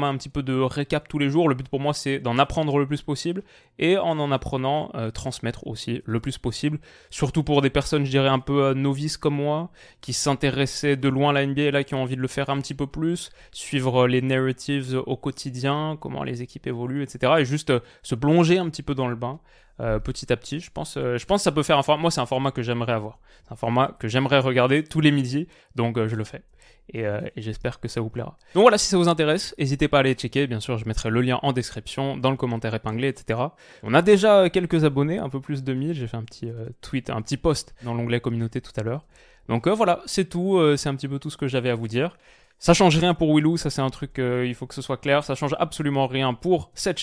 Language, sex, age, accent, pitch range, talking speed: French, male, 20-39, French, 120-150 Hz, 270 wpm